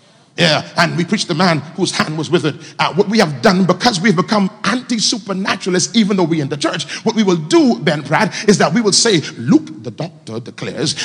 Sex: male